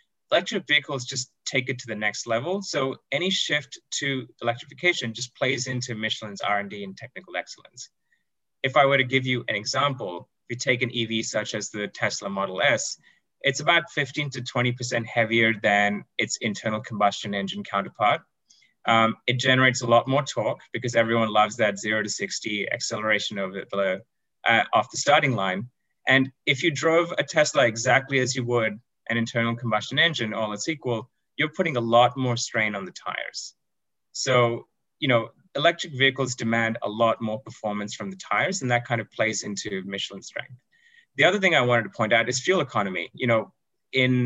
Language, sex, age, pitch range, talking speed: English, male, 20-39, 110-135 Hz, 180 wpm